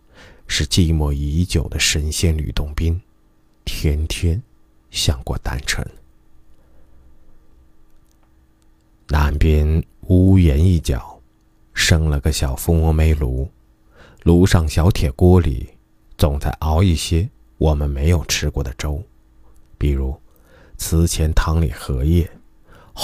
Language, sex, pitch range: Chinese, male, 70-95 Hz